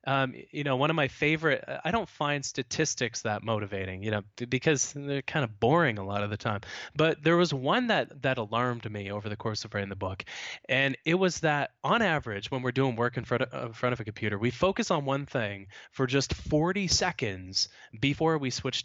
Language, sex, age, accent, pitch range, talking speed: English, male, 20-39, American, 115-160 Hz, 225 wpm